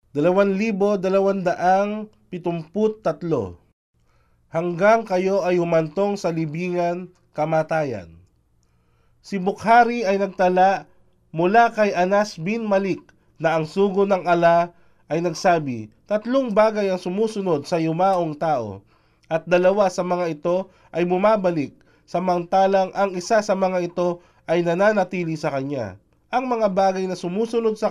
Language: Filipino